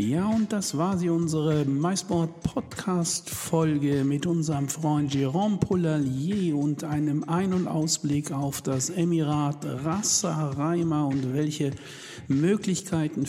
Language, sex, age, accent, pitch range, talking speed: German, male, 60-79, German, 135-170 Hz, 110 wpm